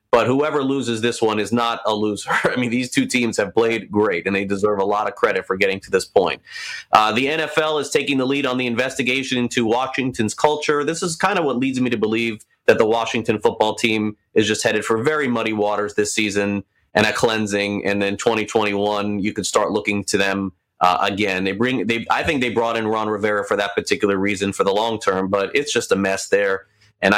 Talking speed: 230 wpm